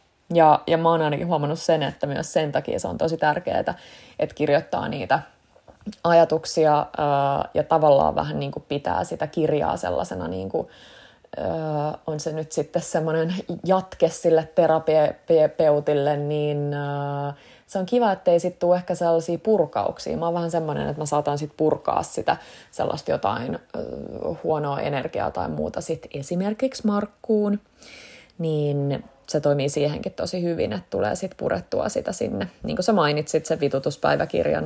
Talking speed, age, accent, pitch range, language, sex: 155 wpm, 20-39, native, 150-175 Hz, Finnish, female